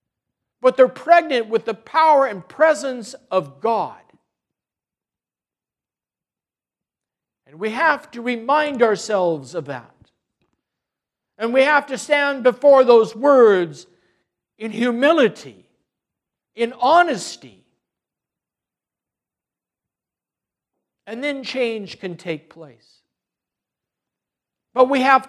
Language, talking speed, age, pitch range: English, 95 wpm, 60-79, 225-280 Hz